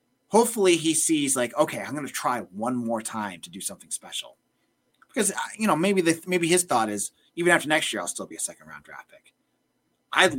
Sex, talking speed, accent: male, 215 wpm, American